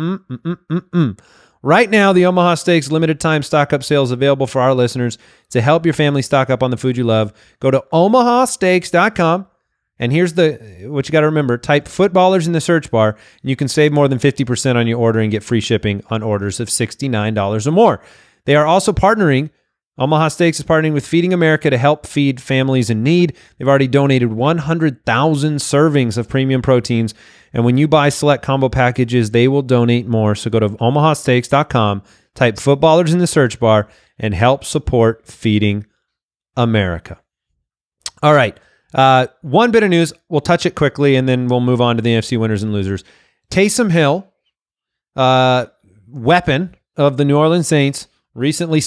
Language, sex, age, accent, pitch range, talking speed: English, male, 30-49, American, 120-160 Hz, 180 wpm